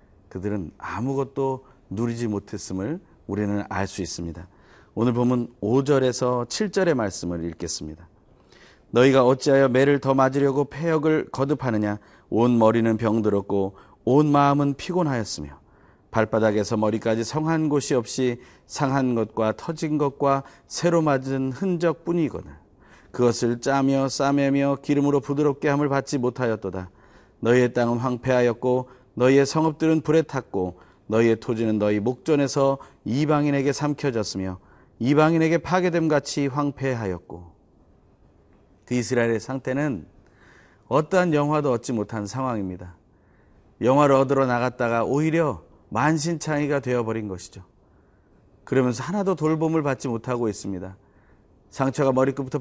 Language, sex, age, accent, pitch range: Korean, male, 40-59, native, 105-145 Hz